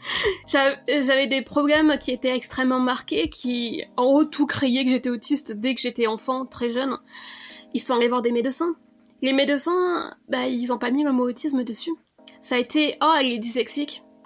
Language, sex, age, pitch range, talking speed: French, female, 20-39, 245-300 Hz, 190 wpm